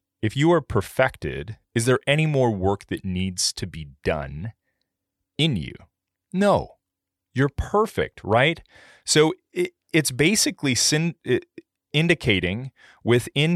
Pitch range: 95-135 Hz